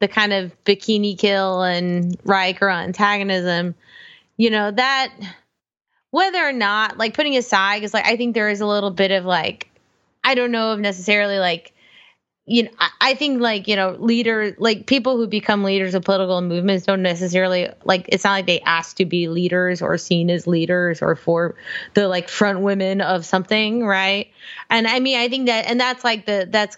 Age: 20-39